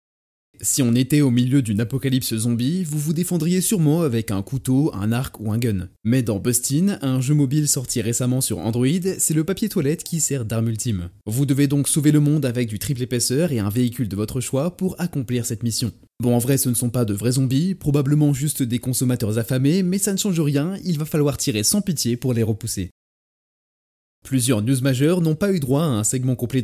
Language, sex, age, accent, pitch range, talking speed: French, male, 20-39, French, 120-145 Hz, 220 wpm